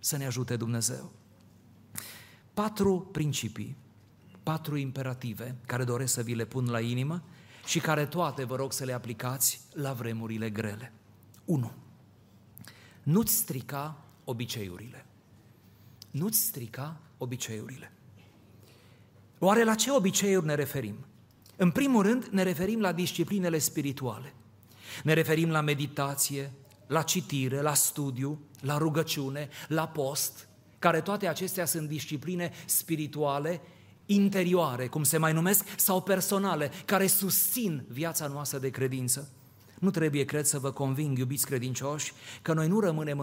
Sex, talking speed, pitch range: male, 125 wpm, 120-160 Hz